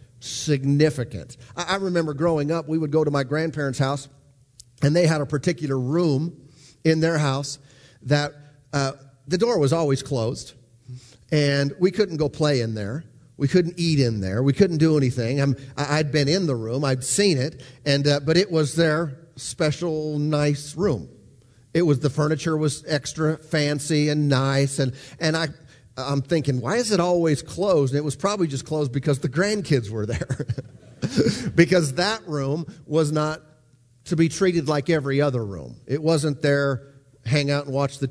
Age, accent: 40-59, American